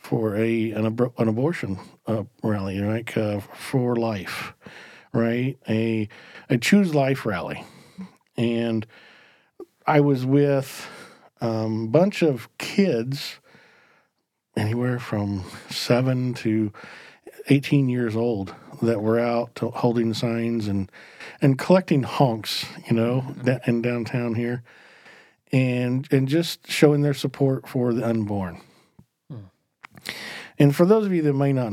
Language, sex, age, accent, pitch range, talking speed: English, male, 50-69, American, 110-135 Hz, 130 wpm